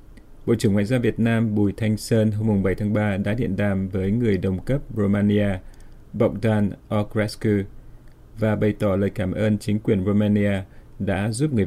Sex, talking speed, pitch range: male, 180 wpm, 100-110 Hz